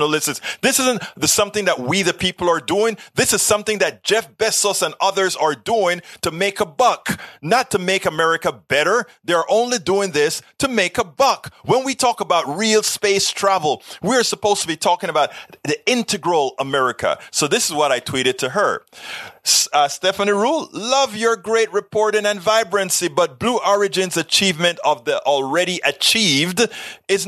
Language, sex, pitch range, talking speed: English, male, 165-220 Hz, 175 wpm